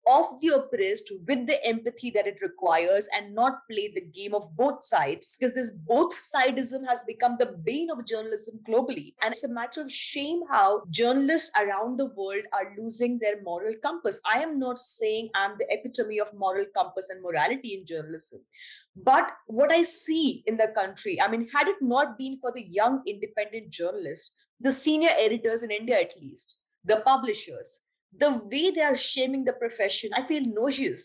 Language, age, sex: English, 20-39, female